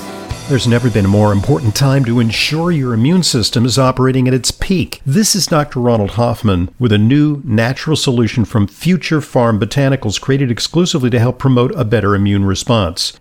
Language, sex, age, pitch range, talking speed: English, male, 50-69, 110-135 Hz, 180 wpm